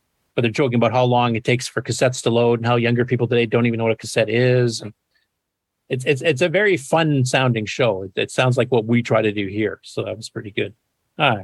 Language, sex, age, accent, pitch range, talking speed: English, male, 40-59, American, 110-130 Hz, 250 wpm